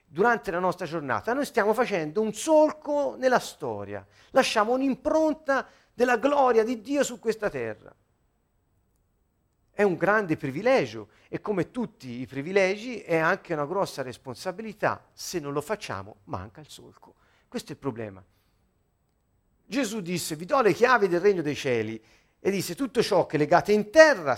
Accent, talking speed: native, 155 wpm